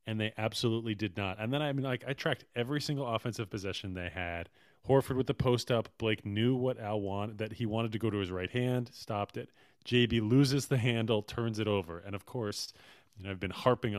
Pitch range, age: 105-130 Hz, 30-49